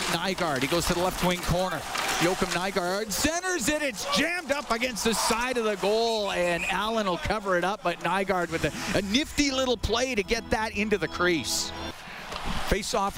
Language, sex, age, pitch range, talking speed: English, male, 40-59, 185-260 Hz, 190 wpm